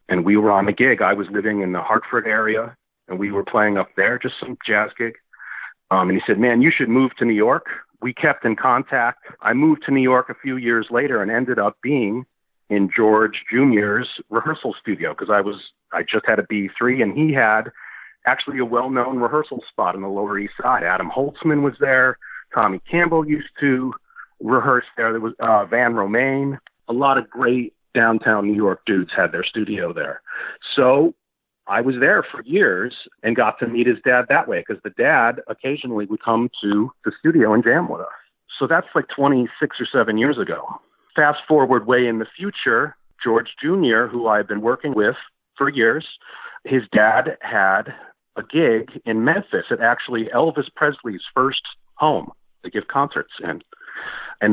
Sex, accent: male, American